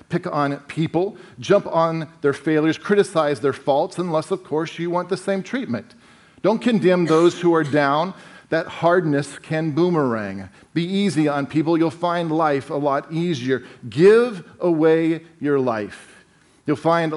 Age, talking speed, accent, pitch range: 40-59, 155 wpm, American, 150-195 Hz